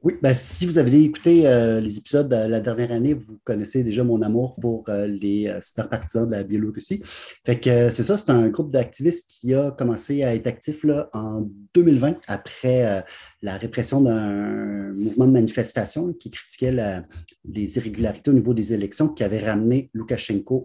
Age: 30-49